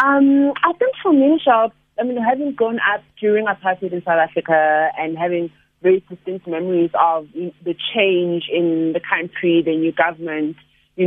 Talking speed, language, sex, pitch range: 165 wpm, English, female, 165-200 Hz